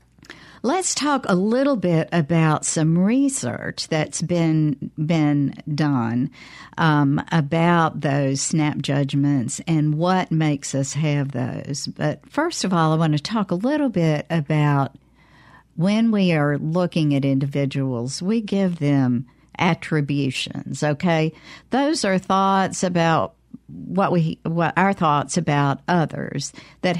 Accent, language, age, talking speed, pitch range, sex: American, English, 50-69, 130 wpm, 145-175 Hz, female